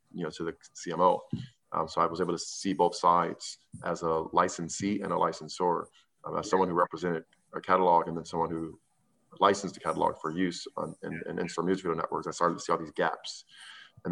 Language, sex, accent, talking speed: English, male, American, 215 wpm